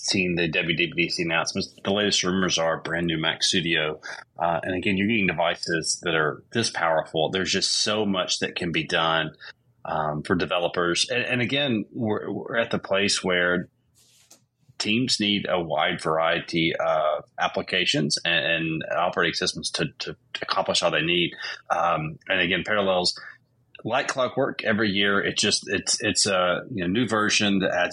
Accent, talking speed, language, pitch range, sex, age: American, 170 wpm, English, 85-120 Hz, male, 30-49